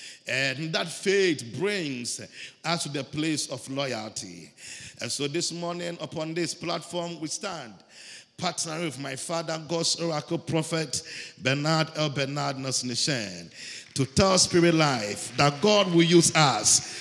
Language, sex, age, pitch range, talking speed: English, male, 50-69, 115-155 Hz, 140 wpm